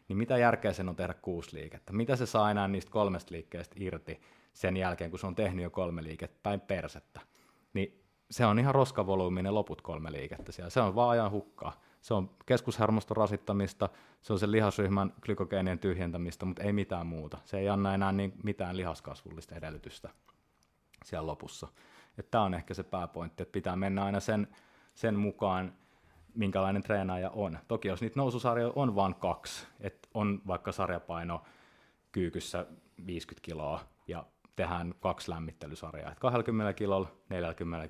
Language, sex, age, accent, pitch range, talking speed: Finnish, male, 30-49, native, 85-105 Hz, 160 wpm